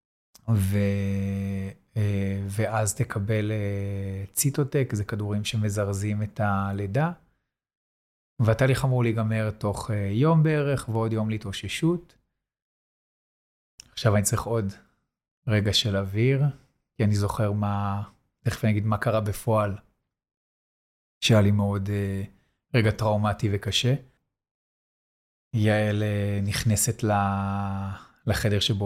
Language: Hebrew